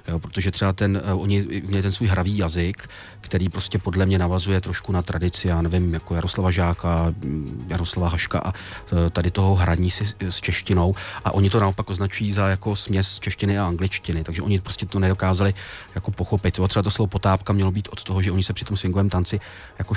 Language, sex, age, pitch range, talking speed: Czech, male, 30-49, 90-105 Hz, 195 wpm